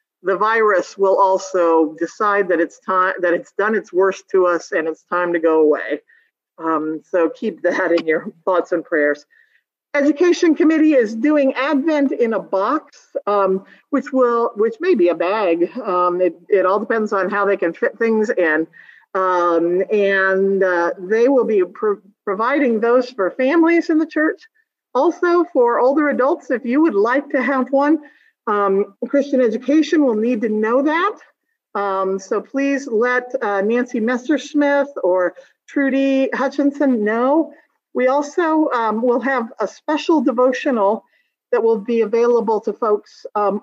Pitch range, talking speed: 195-280 Hz, 160 wpm